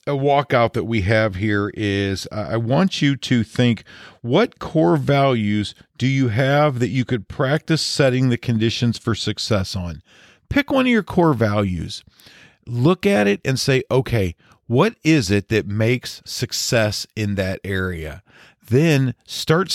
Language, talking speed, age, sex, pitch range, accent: English, 160 wpm, 40-59, male, 105-135 Hz, American